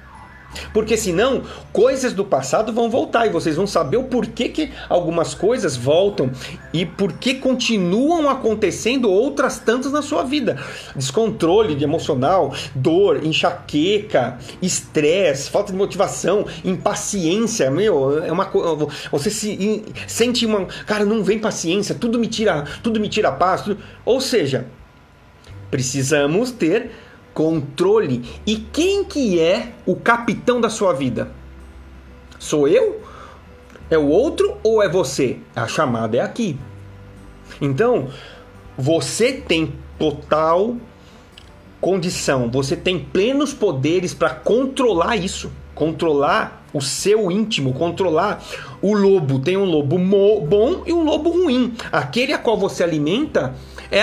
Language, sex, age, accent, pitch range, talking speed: Portuguese, male, 40-59, Brazilian, 160-240 Hz, 130 wpm